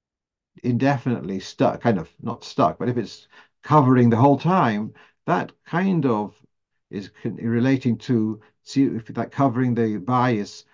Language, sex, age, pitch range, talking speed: English, male, 50-69, 110-130 Hz, 145 wpm